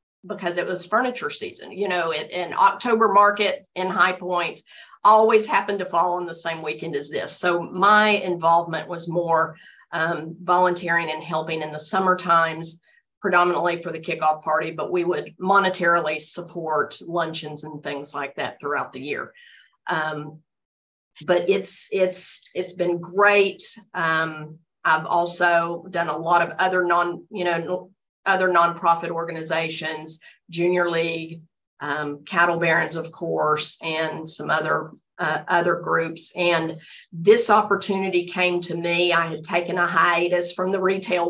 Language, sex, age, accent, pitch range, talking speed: English, female, 40-59, American, 165-185 Hz, 150 wpm